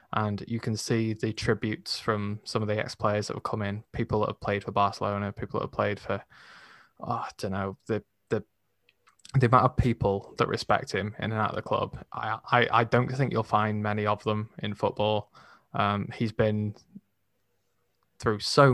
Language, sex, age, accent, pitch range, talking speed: English, male, 20-39, British, 105-115 Hz, 200 wpm